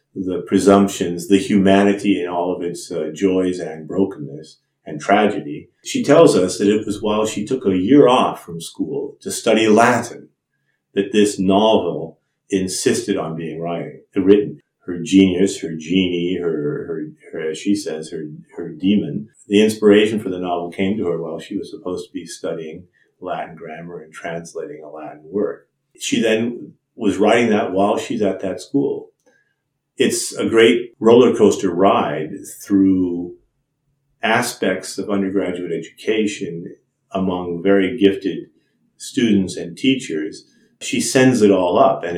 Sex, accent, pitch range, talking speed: male, American, 95-110 Hz, 155 wpm